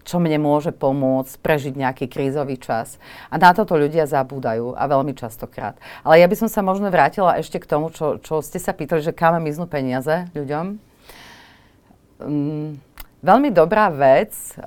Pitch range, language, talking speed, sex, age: 140-170 Hz, Slovak, 170 wpm, female, 30-49